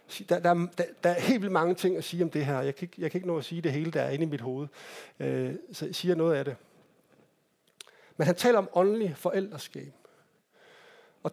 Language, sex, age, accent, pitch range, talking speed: Danish, male, 60-79, native, 165-205 Hz, 235 wpm